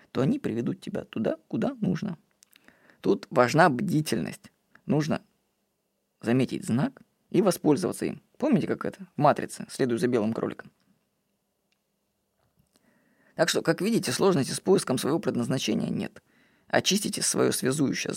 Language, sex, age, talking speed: Russian, female, 20-39, 120 wpm